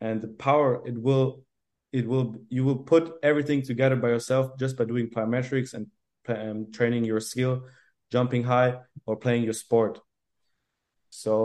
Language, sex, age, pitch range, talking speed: English, male, 20-39, 115-130 Hz, 155 wpm